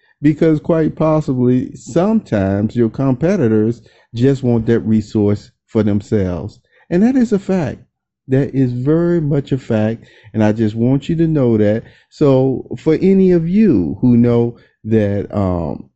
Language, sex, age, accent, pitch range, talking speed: English, male, 50-69, American, 110-150 Hz, 150 wpm